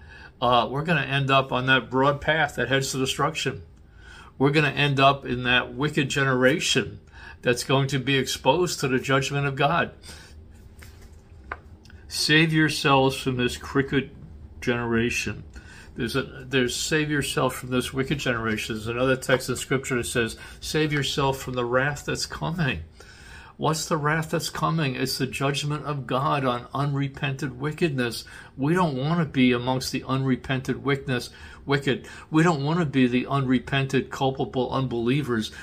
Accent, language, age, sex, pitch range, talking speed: American, English, 50-69, male, 115-140 Hz, 155 wpm